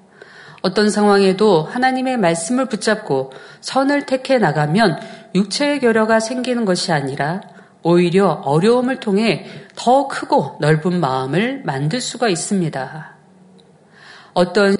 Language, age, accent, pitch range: Korean, 40-59, native, 165-230 Hz